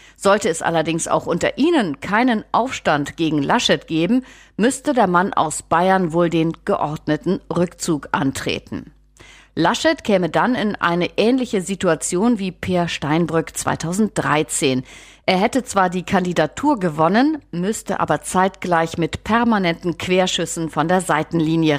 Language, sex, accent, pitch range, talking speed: German, female, German, 160-215 Hz, 130 wpm